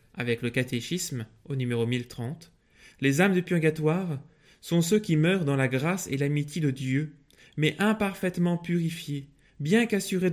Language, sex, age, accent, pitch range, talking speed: French, male, 20-39, French, 130-165 Hz, 150 wpm